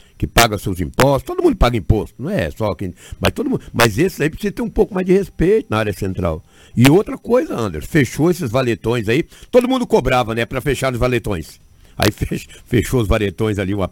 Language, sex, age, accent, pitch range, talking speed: Portuguese, male, 60-79, Brazilian, 105-150 Hz, 220 wpm